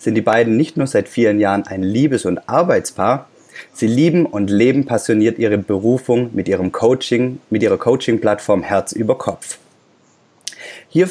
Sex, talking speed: male, 155 wpm